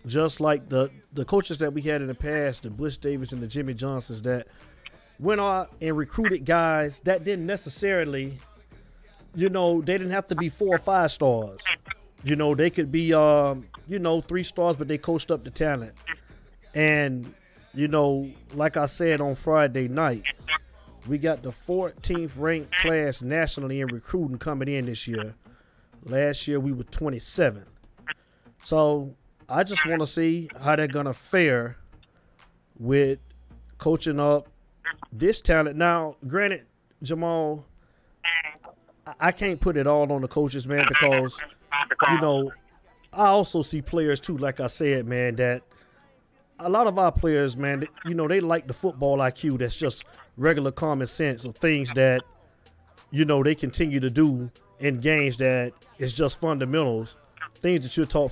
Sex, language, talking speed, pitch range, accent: male, English, 165 wpm, 130-165 Hz, American